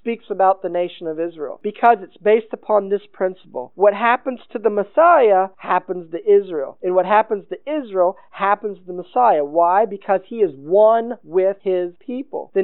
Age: 50-69